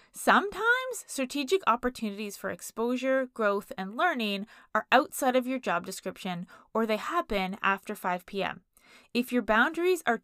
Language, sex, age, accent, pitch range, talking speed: English, female, 20-39, American, 195-255 Hz, 135 wpm